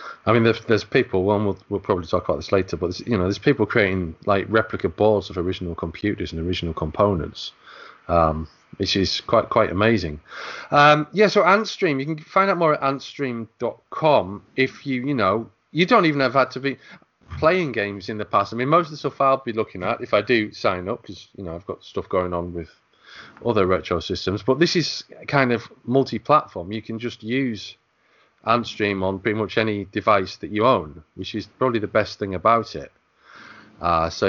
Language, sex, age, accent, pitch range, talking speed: English, male, 30-49, British, 95-130 Hz, 210 wpm